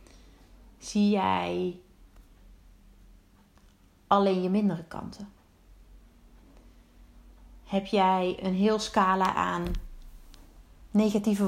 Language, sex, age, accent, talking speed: Dutch, female, 30-49, Dutch, 70 wpm